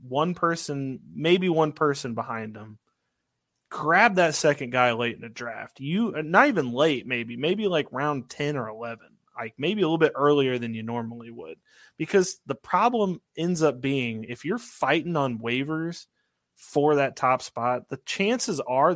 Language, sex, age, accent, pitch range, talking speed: English, male, 30-49, American, 120-160 Hz, 170 wpm